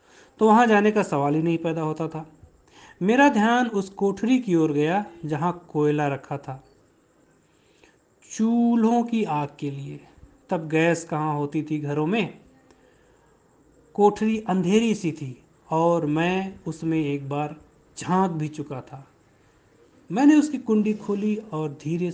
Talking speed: 140 wpm